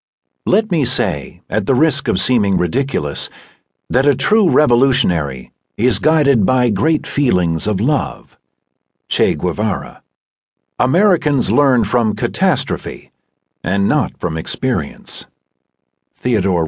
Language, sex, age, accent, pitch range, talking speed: English, male, 50-69, American, 85-130 Hz, 110 wpm